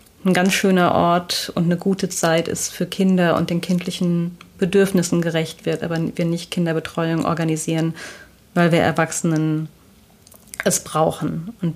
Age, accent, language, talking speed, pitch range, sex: 30-49, German, German, 145 wpm, 165-185 Hz, female